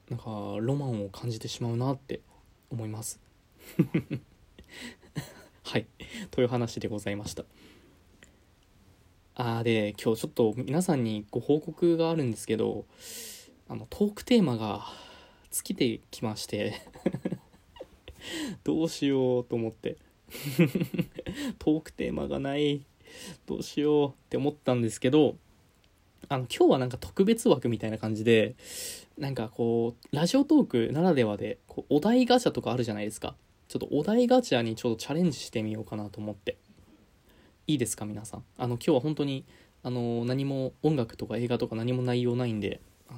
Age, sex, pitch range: 20-39, male, 110-145 Hz